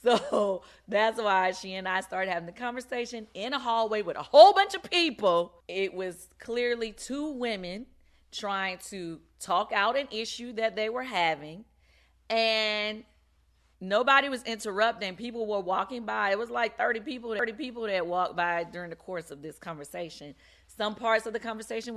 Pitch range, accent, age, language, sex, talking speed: 175-240 Hz, American, 30-49, English, female, 170 wpm